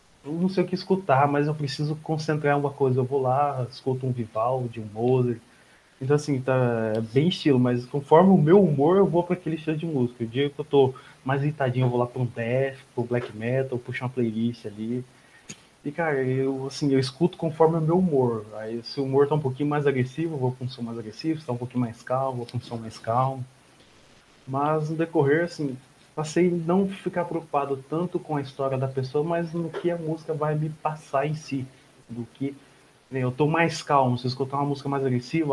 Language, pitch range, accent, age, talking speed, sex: Portuguese, 125-155 Hz, Brazilian, 20-39, 225 wpm, male